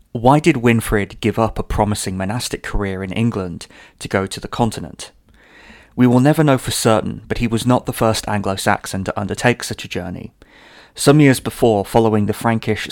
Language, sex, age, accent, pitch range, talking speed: English, male, 30-49, British, 100-120 Hz, 185 wpm